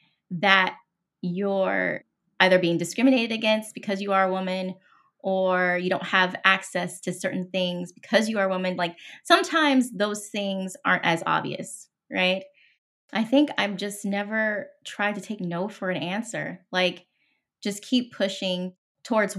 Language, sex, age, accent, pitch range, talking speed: English, female, 20-39, American, 180-210 Hz, 155 wpm